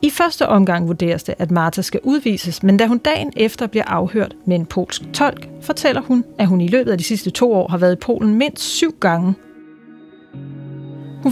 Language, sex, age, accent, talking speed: Danish, female, 30-49, native, 205 wpm